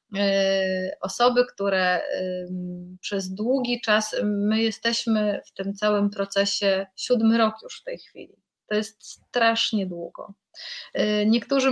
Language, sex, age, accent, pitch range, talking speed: Polish, female, 30-49, native, 195-230 Hz, 115 wpm